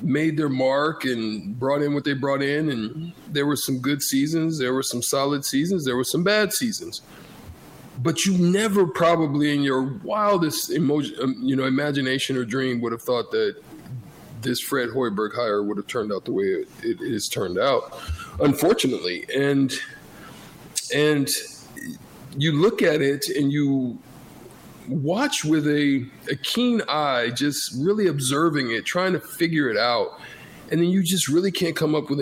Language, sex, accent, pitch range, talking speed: English, male, American, 135-185 Hz, 170 wpm